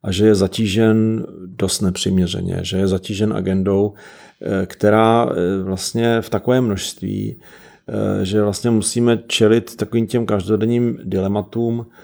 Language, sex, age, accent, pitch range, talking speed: Czech, male, 40-59, native, 95-115 Hz, 115 wpm